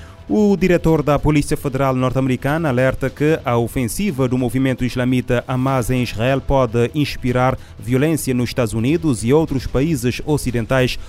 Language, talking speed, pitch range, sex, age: Portuguese, 140 wpm, 115-135 Hz, male, 30-49